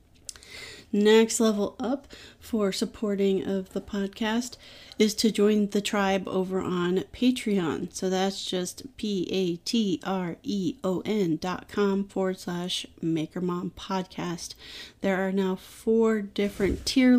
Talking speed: 110 wpm